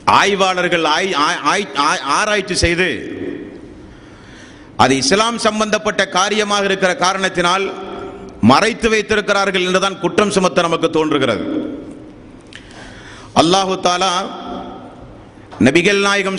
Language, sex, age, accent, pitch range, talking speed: Tamil, male, 50-69, native, 190-235 Hz, 75 wpm